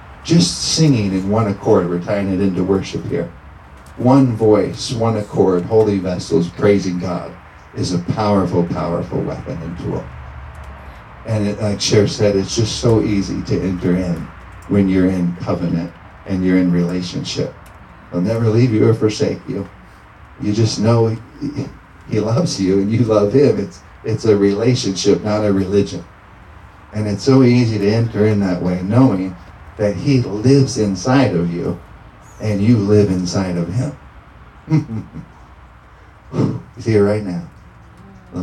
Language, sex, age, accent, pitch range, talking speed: English, male, 40-59, American, 95-115 Hz, 150 wpm